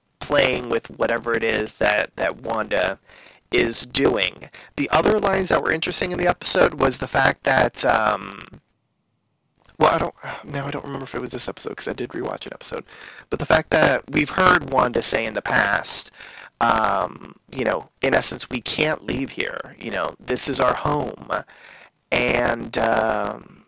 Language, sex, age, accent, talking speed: English, male, 30-49, American, 175 wpm